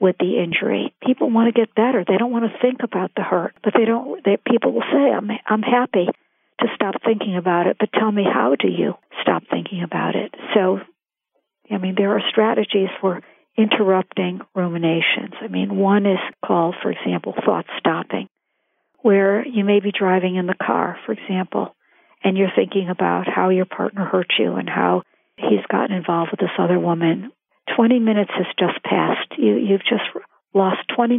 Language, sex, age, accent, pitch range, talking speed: English, female, 60-79, American, 185-225 Hz, 185 wpm